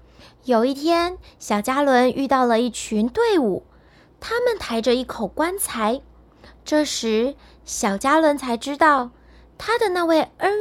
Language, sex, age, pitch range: Chinese, female, 20-39, 230-340 Hz